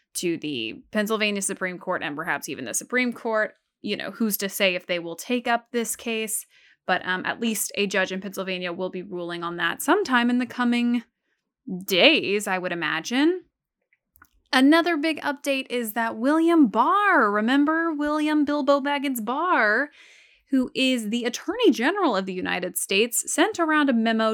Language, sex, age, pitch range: English, female, 20-39, 195-250 Hz